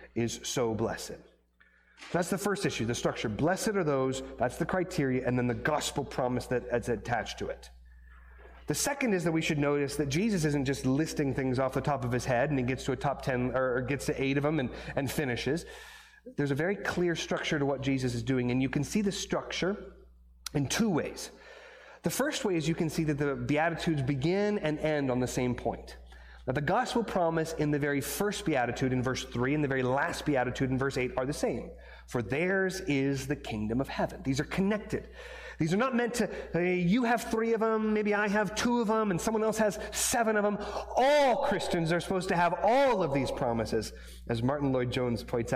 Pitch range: 125-185 Hz